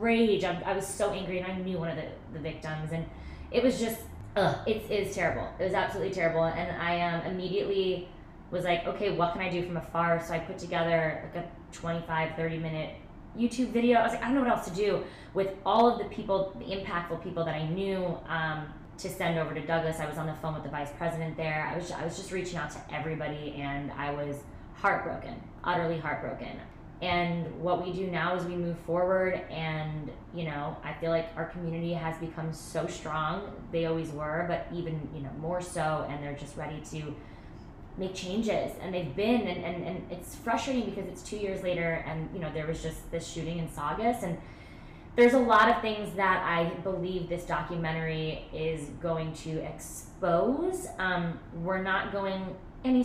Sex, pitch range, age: female, 160-190 Hz, 20-39